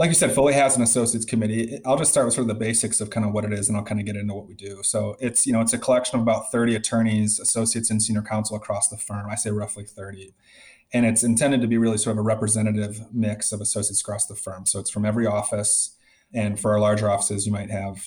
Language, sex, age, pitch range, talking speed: English, male, 30-49, 105-115 Hz, 270 wpm